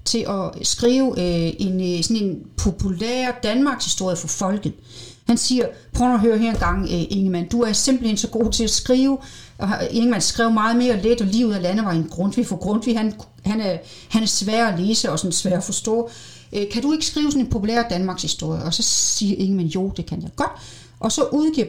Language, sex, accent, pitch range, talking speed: Danish, female, native, 180-235 Hz, 215 wpm